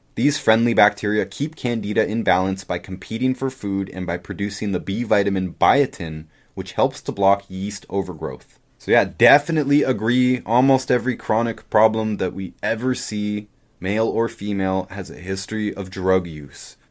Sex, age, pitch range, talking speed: male, 20-39, 95-110 Hz, 160 wpm